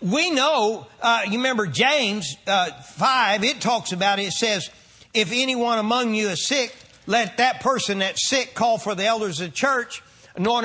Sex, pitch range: male, 210-260 Hz